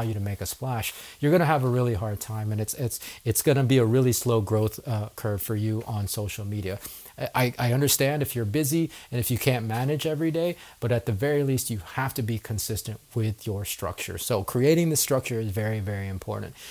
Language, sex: English, male